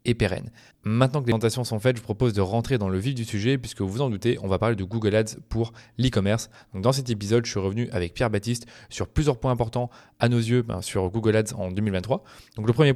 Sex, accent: male, French